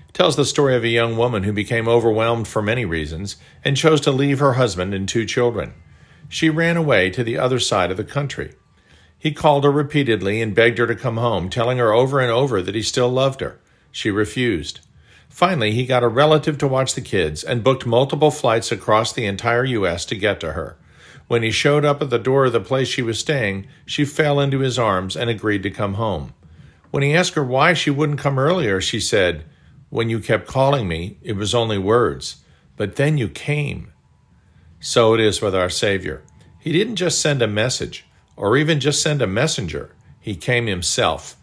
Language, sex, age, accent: English, male, 50-69, American